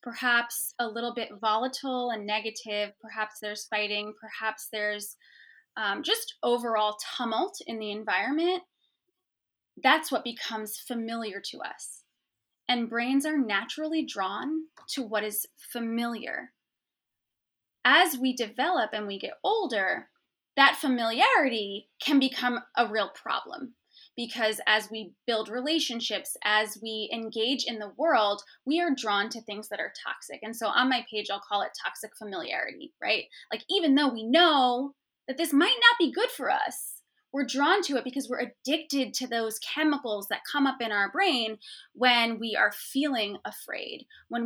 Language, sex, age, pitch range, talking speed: English, female, 20-39, 215-280 Hz, 155 wpm